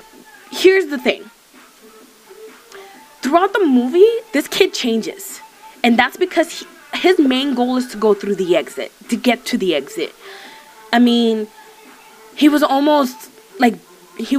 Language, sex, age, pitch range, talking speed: English, female, 20-39, 210-275 Hz, 140 wpm